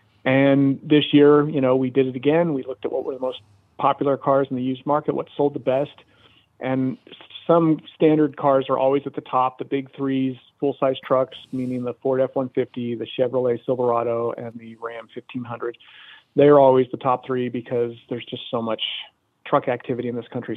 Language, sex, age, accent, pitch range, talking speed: English, male, 40-59, American, 120-135 Hz, 195 wpm